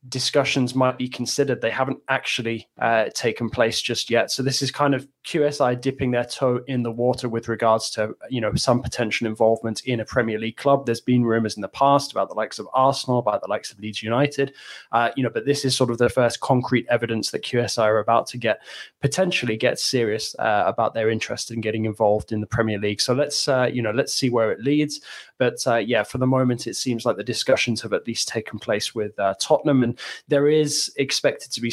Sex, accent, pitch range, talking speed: male, British, 110-130 Hz, 230 wpm